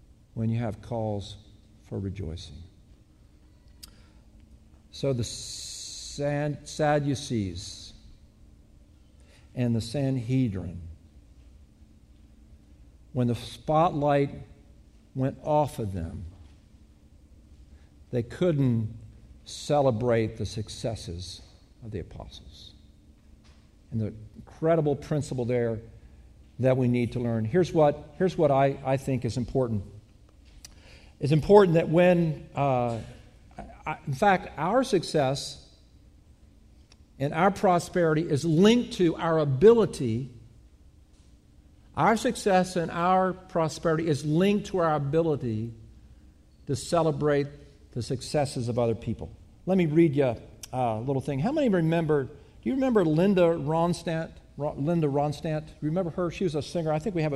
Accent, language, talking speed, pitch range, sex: American, English, 115 wpm, 105-155 Hz, male